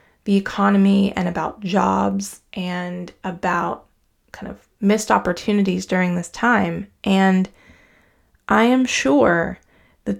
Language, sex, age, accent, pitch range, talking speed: English, female, 20-39, American, 175-215 Hz, 110 wpm